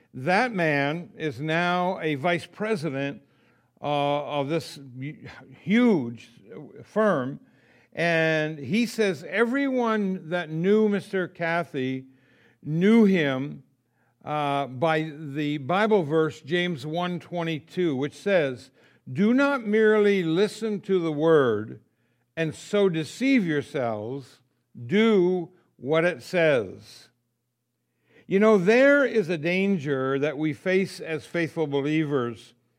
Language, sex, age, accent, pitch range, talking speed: English, male, 60-79, American, 140-205 Hz, 110 wpm